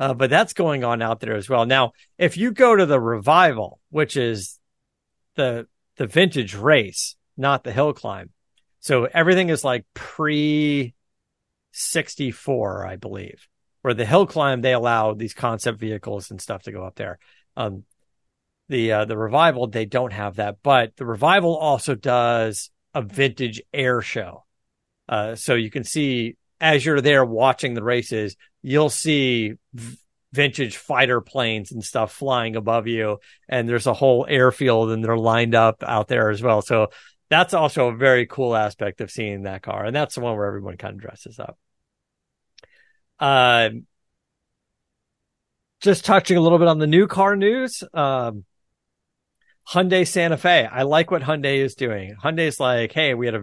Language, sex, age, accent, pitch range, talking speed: English, male, 50-69, American, 115-150 Hz, 170 wpm